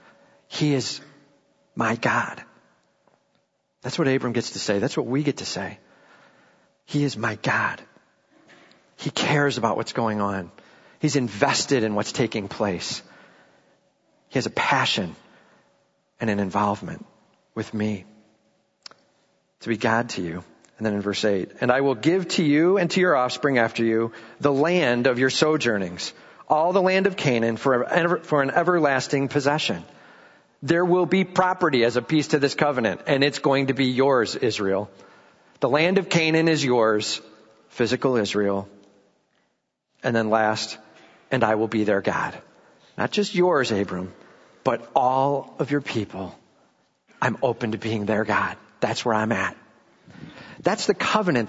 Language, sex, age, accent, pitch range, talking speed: English, male, 40-59, American, 110-155 Hz, 155 wpm